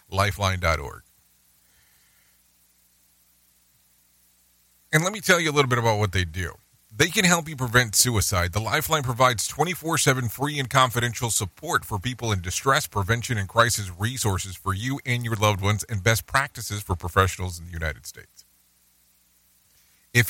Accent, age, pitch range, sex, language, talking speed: American, 40-59, 85-135 Hz, male, English, 150 wpm